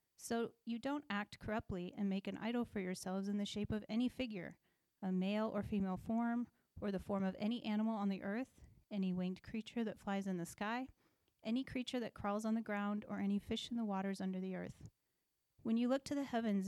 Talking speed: 220 wpm